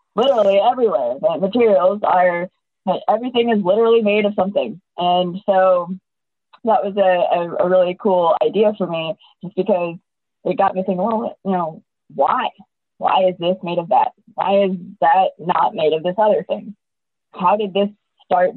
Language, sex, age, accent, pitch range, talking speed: English, female, 20-39, American, 165-215 Hz, 165 wpm